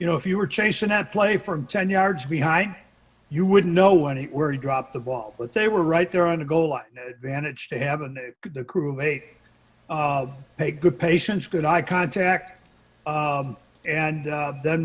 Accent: American